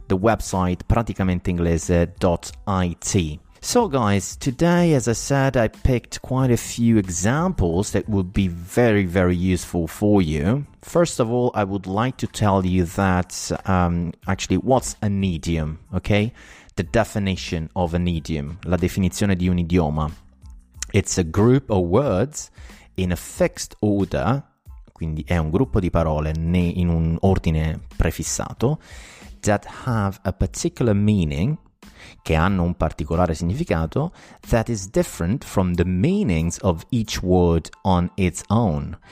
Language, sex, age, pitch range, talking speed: Italian, male, 30-49, 85-105 Hz, 135 wpm